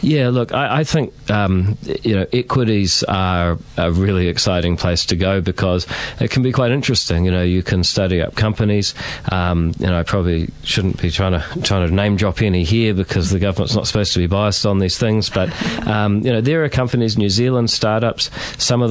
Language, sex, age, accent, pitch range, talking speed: English, male, 40-59, Australian, 90-110 Hz, 215 wpm